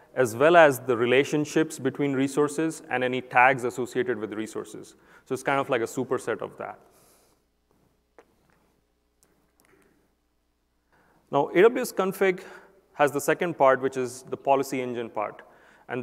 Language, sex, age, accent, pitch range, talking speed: English, male, 30-49, Indian, 120-150 Hz, 140 wpm